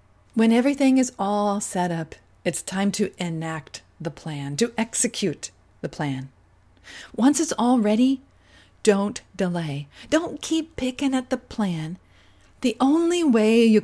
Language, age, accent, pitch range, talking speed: English, 40-59, American, 165-235 Hz, 140 wpm